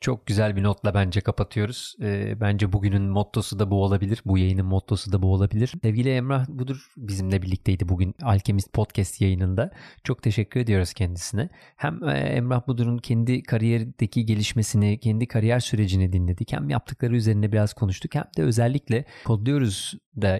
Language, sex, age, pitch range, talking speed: Turkish, male, 30-49, 100-125 Hz, 150 wpm